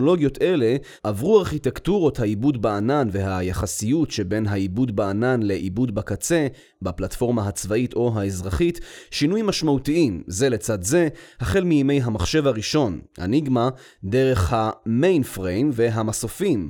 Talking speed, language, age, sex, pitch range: 110 wpm, Hebrew, 30-49, male, 110-150 Hz